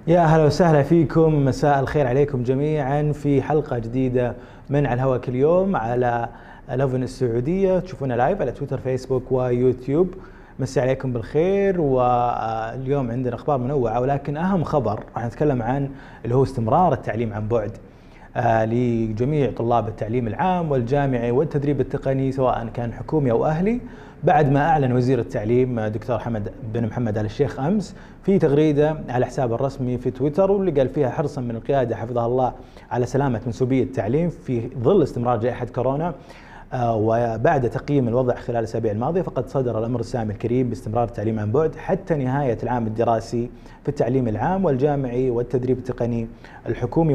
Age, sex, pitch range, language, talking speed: 30-49, male, 120-145 Hz, Arabic, 150 wpm